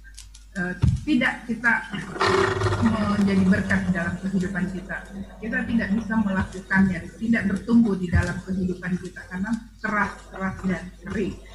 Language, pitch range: Indonesian, 180-230 Hz